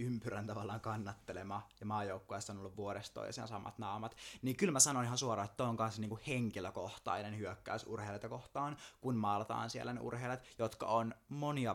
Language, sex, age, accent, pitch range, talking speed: Finnish, male, 20-39, native, 100-120 Hz, 180 wpm